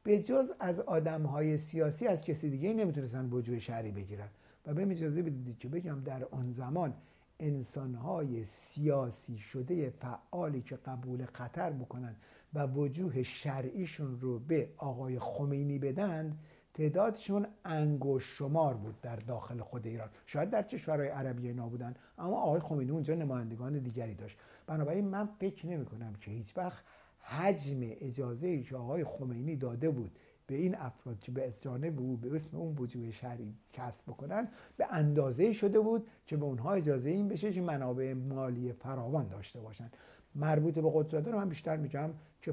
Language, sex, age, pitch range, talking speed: Persian, male, 60-79, 125-165 Hz, 155 wpm